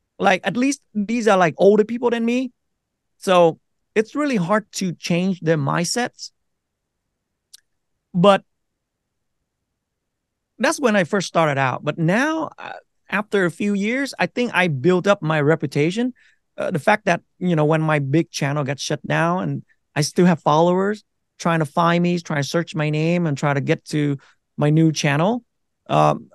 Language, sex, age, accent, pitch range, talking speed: English, male, 30-49, American, 150-195 Hz, 170 wpm